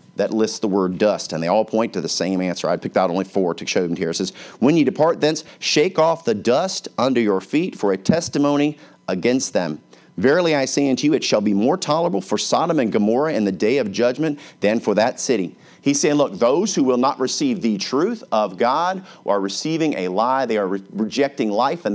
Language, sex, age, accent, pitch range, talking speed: English, male, 40-59, American, 105-150 Hz, 230 wpm